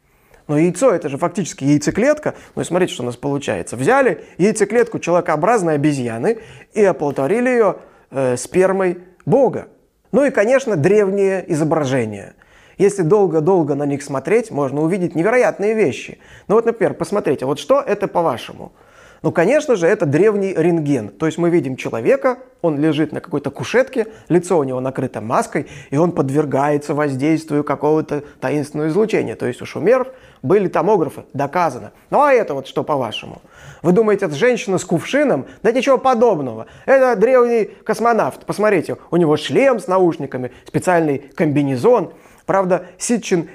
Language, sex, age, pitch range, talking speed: Russian, male, 20-39, 150-220 Hz, 150 wpm